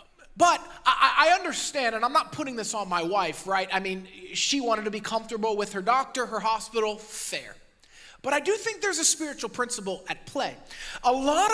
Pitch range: 245-330 Hz